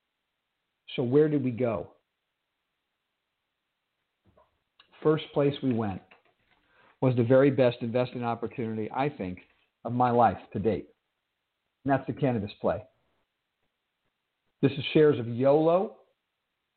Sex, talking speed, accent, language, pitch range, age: male, 115 wpm, American, English, 120-150 Hz, 50-69